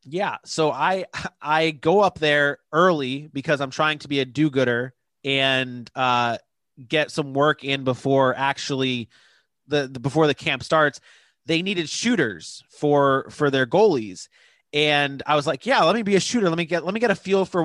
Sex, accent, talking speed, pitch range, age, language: male, American, 185 wpm, 135-160 Hz, 30-49, English